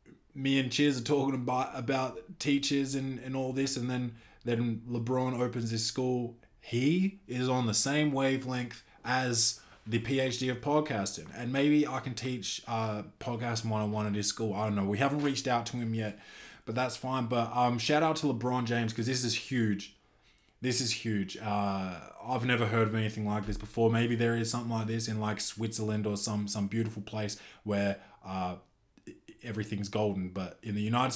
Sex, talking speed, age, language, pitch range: male, 190 wpm, 20-39, English, 105-130 Hz